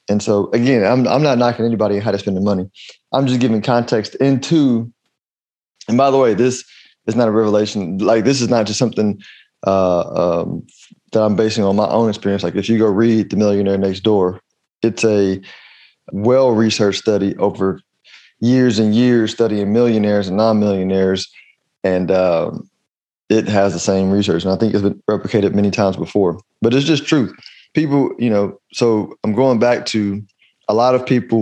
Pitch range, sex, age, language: 100-120 Hz, male, 20-39, English